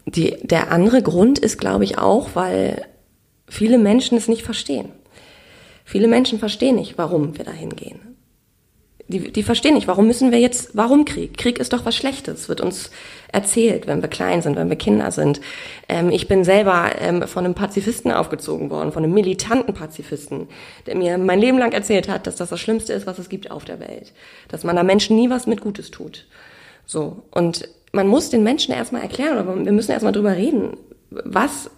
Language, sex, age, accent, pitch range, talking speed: German, female, 20-39, German, 180-240 Hz, 195 wpm